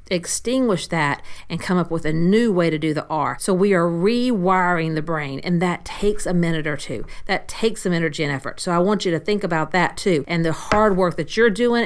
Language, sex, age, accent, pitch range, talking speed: English, female, 40-59, American, 160-200 Hz, 245 wpm